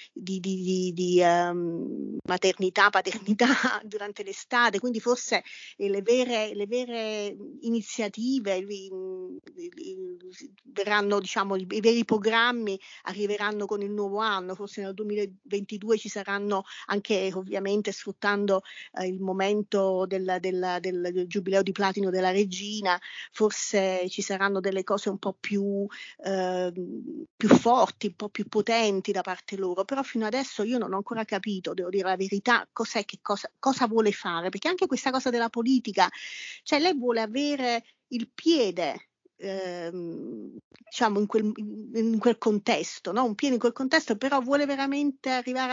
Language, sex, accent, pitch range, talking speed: Italian, female, native, 195-245 Hz, 150 wpm